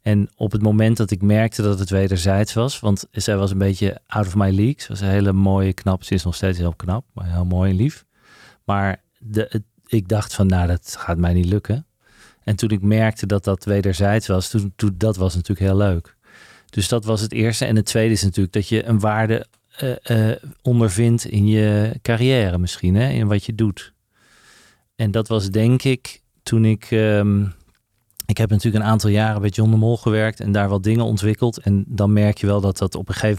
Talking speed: 225 wpm